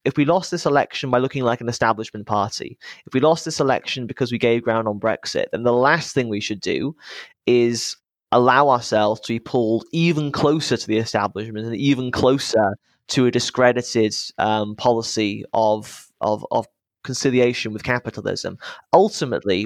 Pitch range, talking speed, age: 110-135 Hz, 170 wpm, 20-39